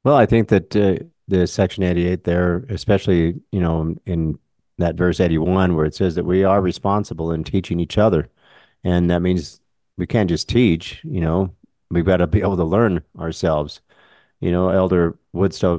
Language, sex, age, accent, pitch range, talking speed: English, male, 40-59, American, 85-95 Hz, 185 wpm